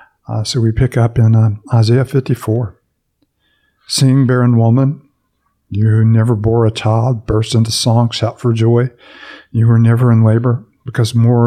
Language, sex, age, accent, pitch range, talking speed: English, male, 50-69, American, 115-125 Hz, 160 wpm